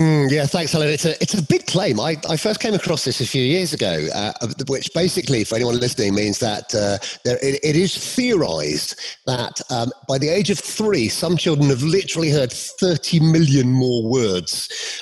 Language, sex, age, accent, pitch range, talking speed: English, male, 40-59, British, 125-175 Hz, 200 wpm